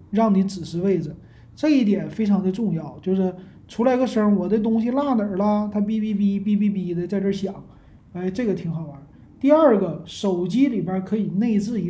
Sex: male